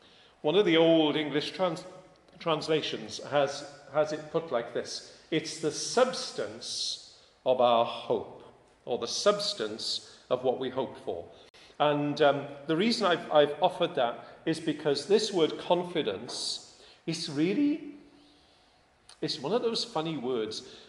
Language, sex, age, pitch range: English, male, 50-69, 125-165 Hz